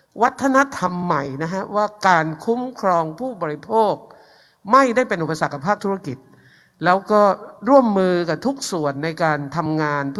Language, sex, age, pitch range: Thai, male, 60-79, 160-205 Hz